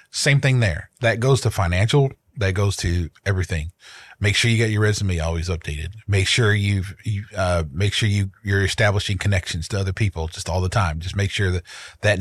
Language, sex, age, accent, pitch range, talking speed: English, male, 30-49, American, 95-115 Hz, 205 wpm